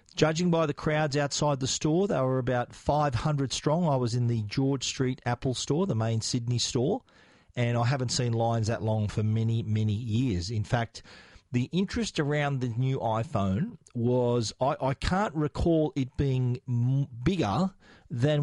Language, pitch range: English, 110-130 Hz